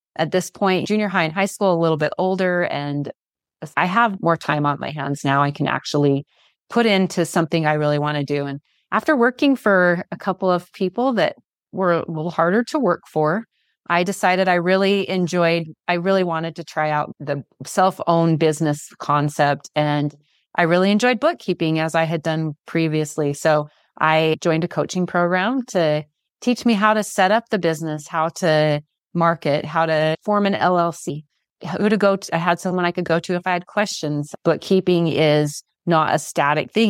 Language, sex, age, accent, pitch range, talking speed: English, female, 30-49, American, 150-185 Hz, 190 wpm